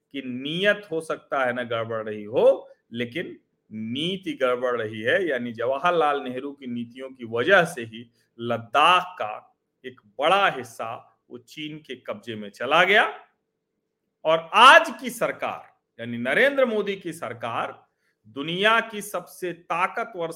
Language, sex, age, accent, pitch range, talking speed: Hindi, male, 40-59, native, 120-175 Hz, 140 wpm